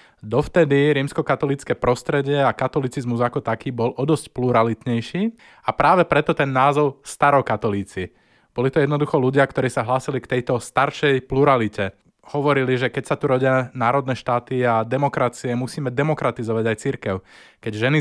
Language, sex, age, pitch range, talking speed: Slovak, male, 20-39, 115-140 Hz, 145 wpm